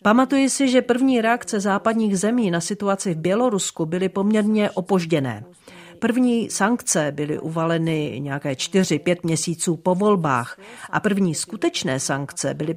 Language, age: Czech, 40-59